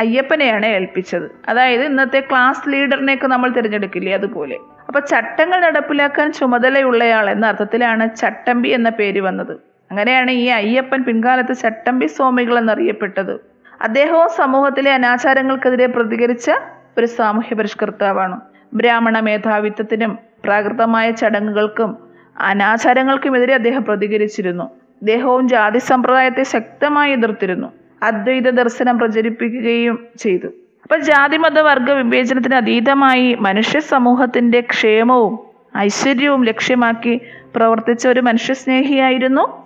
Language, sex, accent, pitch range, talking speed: Malayalam, female, native, 220-260 Hz, 95 wpm